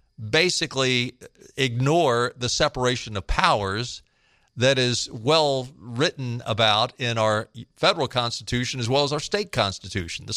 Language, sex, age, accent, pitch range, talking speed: English, male, 50-69, American, 110-145 Hz, 125 wpm